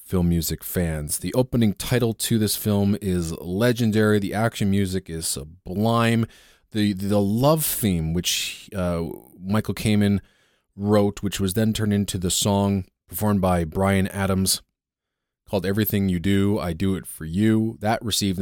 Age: 30-49